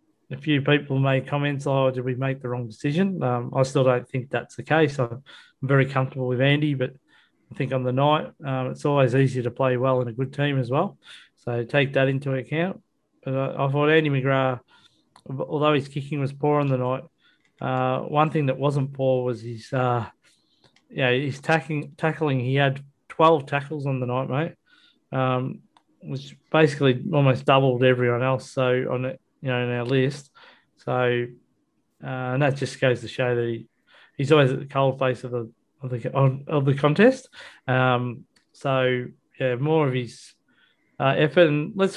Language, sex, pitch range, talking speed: English, male, 125-145 Hz, 190 wpm